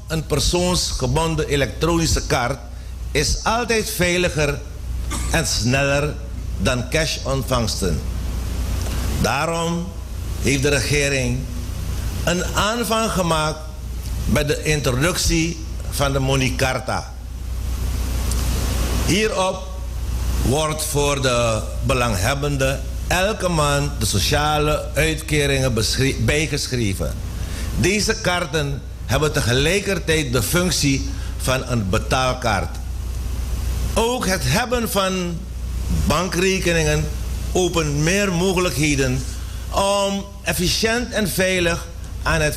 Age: 60-79